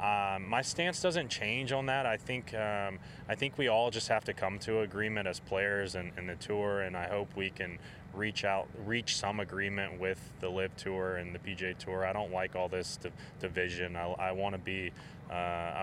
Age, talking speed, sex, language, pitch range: 20-39, 210 wpm, male, English, 90-105 Hz